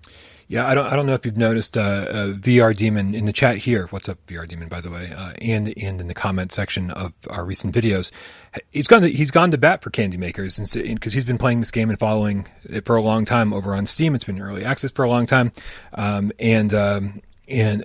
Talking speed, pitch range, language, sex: 250 wpm, 95-115 Hz, English, male